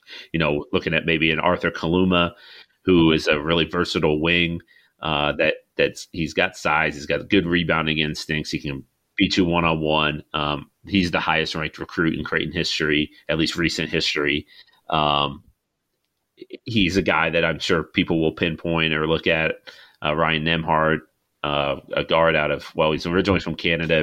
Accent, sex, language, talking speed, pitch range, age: American, male, English, 175 wpm, 80-95 Hz, 30-49